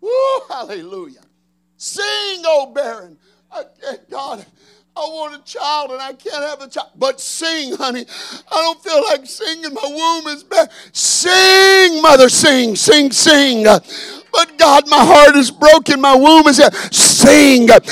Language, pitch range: English, 280-330 Hz